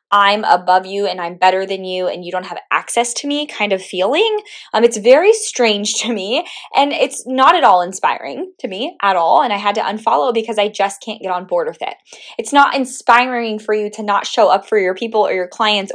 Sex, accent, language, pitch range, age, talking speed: female, American, English, 190-255 Hz, 20-39, 235 wpm